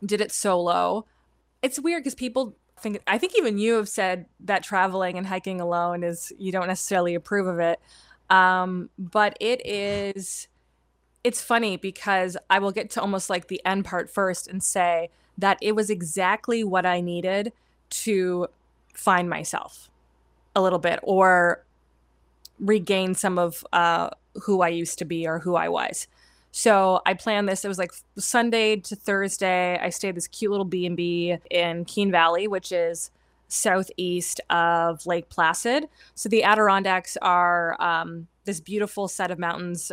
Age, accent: 20-39, American